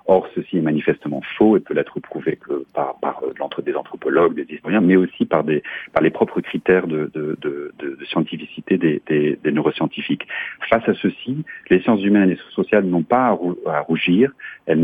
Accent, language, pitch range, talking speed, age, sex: French, French, 80-100 Hz, 185 wpm, 40-59, male